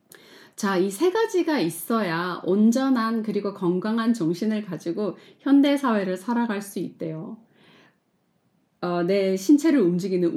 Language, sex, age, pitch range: Korean, female, 30-49, 180-240 Hz